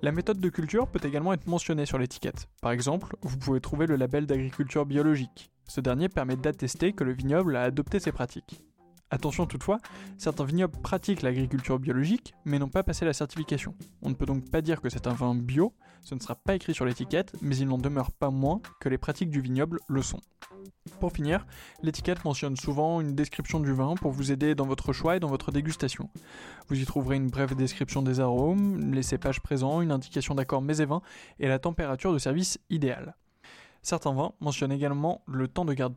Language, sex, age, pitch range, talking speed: French, male, 20-39, 130-165 Hz, 205 wpm